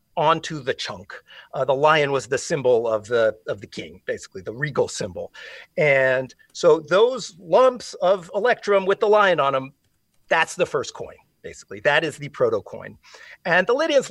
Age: 40-59